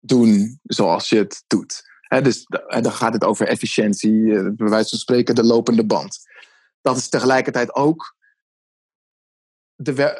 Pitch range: 130-155 Hz